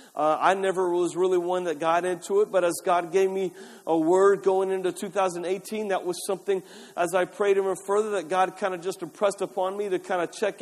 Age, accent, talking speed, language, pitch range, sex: 40-59, American, 225 wpm, English, 185-225 Hz, male